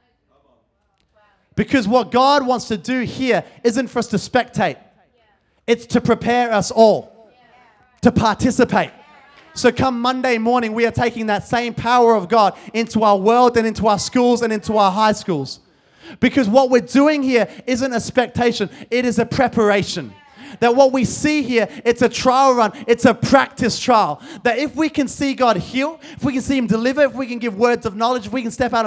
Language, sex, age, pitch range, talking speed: English, male, 20-39, 205-245 Hz, 195 wpm